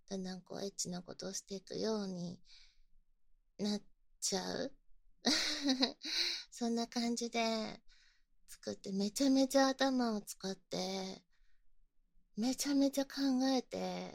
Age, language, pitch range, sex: 20-39, Japanese, 215-280 Hz, female